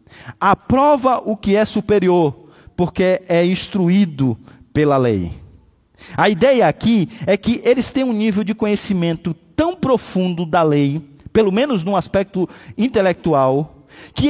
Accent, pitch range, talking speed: Brazilian, 185-260 Hz, 130 wpm